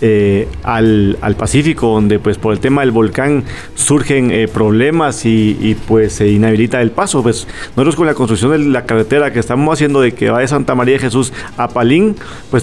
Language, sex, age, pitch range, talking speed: Spanish, male, 40-59, 115-135 Hz, 210 wpm